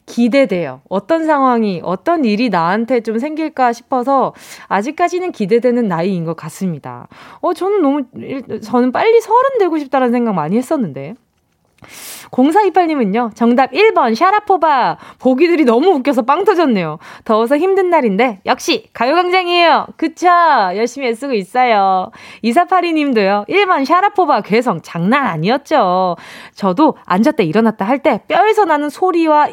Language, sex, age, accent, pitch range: Korean, female, 20-39, native, 200-305 Hz